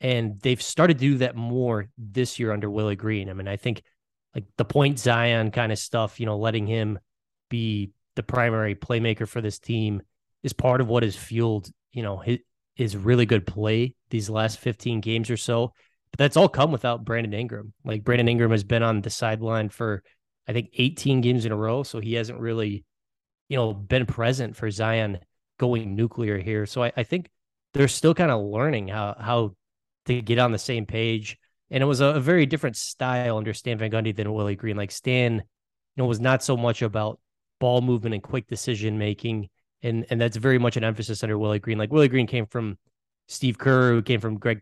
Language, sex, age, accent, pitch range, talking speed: English, male, 20-39, American, 110-125 Hz, 210 wpm